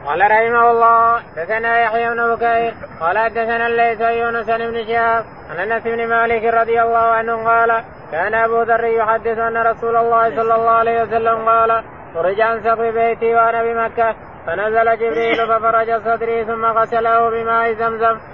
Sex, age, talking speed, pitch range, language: male, 20-39, 145 wpm, 225-230 Hz, Arabic